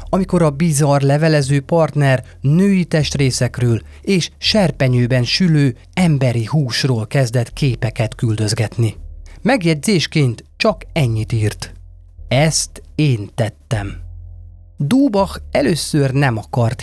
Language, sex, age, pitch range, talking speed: Hungarian, male, 30-49, 110-155 Hz, 95 wpm